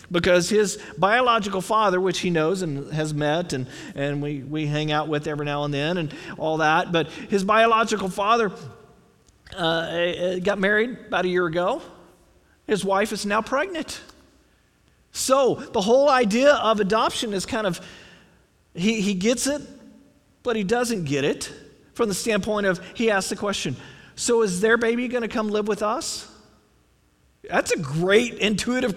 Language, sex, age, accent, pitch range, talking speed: English, male, 40-59, American, 175-230 Hz, 165 wpm